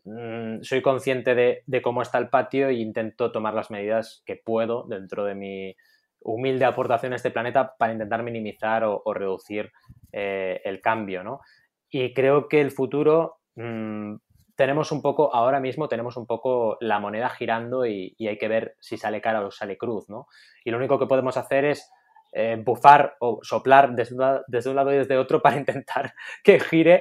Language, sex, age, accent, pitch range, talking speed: Spanish, male, 20-39, Spanish, 110-130 Hz, 185 wpm